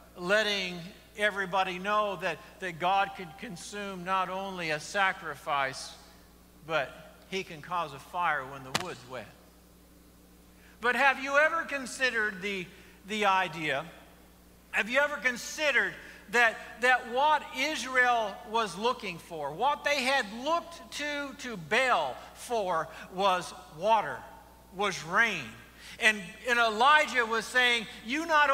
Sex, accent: male, American